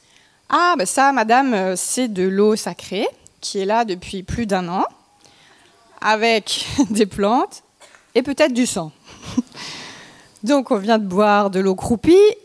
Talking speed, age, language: 145 wpm, 20-39, French